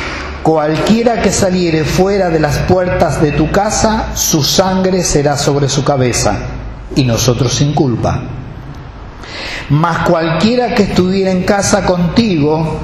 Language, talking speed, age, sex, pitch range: Spanish, 125 wpm, 50-69, male, 120-185 Hz